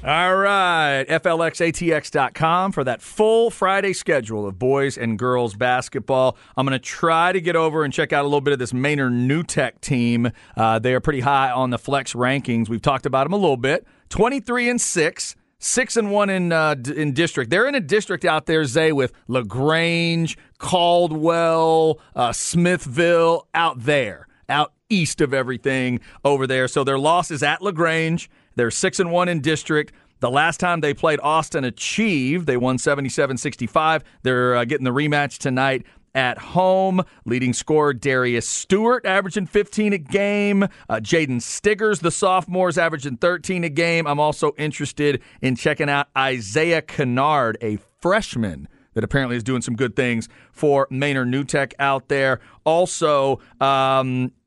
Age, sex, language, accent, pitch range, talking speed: 40-59, male, English, American, 130-170 Hz, 165 wpm